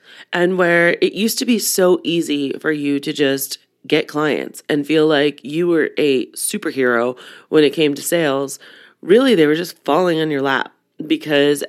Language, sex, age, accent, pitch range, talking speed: English, female, 30-49, American, 140-170 Hz, 180 wpm